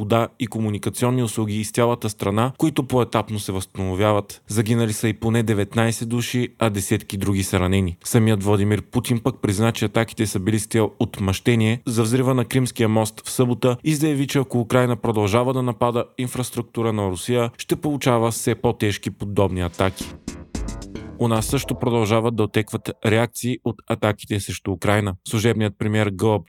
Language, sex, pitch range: Bulgarian, male, 105-125 Hz